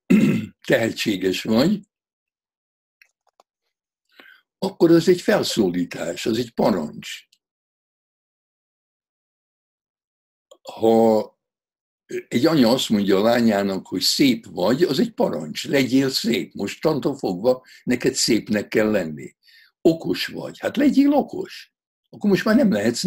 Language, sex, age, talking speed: Hungarian, male, 60-79, 105 wpm